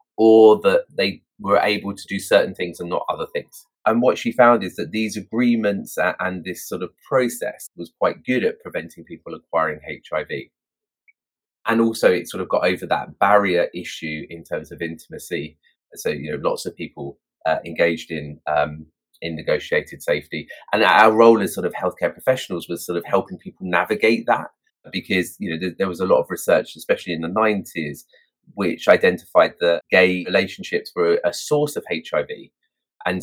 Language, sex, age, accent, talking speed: English, male, 30-49, British, 185 wpm